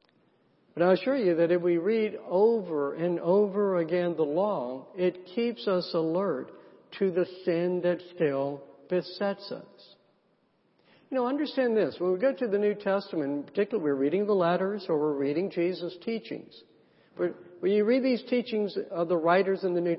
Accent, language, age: American, English, 60-79